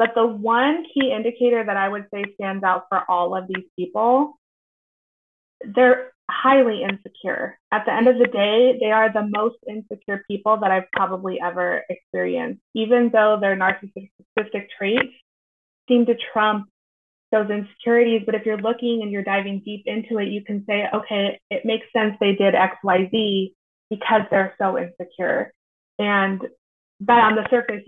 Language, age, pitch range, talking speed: English, 20-39, 195-235 Hz, 165 wpm